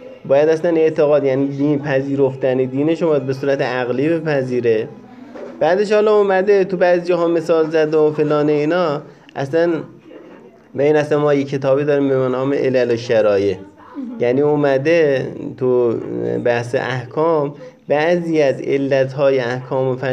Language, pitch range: Persian, 130-160 Hz